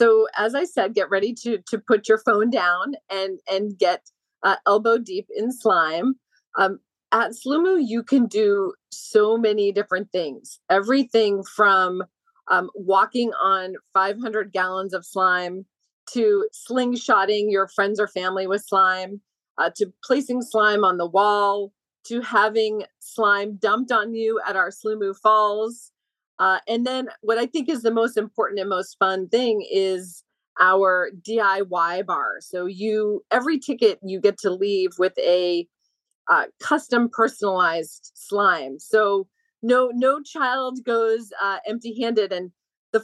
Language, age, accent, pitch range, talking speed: English, 40-59, American, 190-245 Hz, 145 wpm